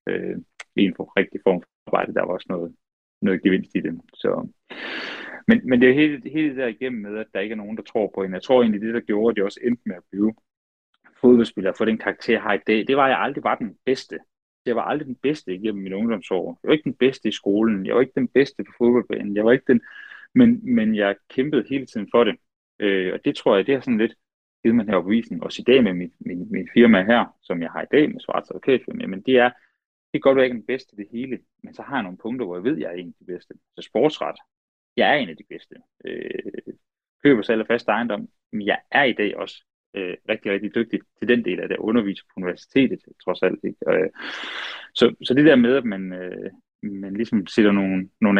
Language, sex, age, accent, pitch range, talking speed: Danish, male, 30-49, native, 100-130 Hz, 255 wpm